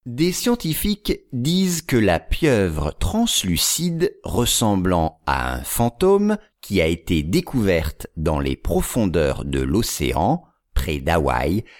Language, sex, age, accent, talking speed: English, male, 50-69, French, 110 wpm